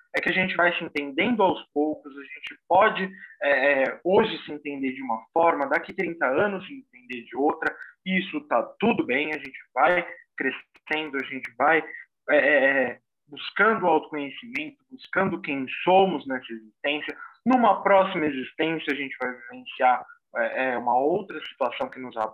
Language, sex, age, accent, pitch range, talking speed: Portuguese, male, 20-39, Brazilian, 130-185 Hz, 160 wpm